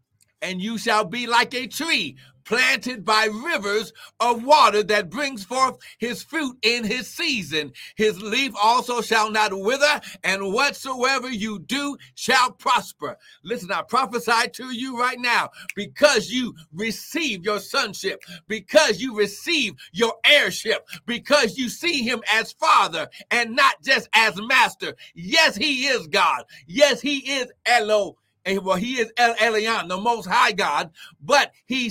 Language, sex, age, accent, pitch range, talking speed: English, male, 60-79, American, 205-260 Hz, 150 wpm